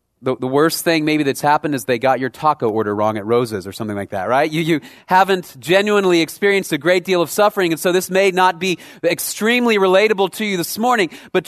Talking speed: 230 wpm